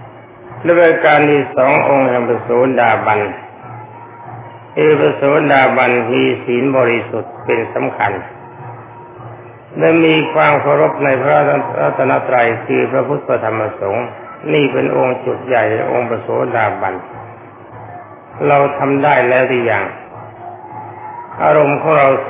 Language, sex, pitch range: Thai, male, 120-145 Hz